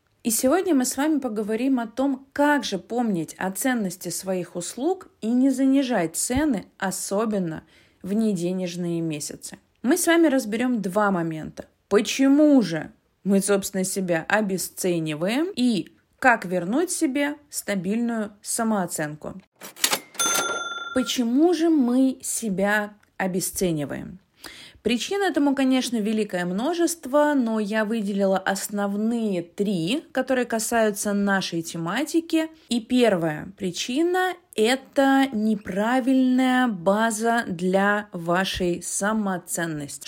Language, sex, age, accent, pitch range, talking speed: Russian, female, 20-39, native, 190-265 Hz, 105 wpm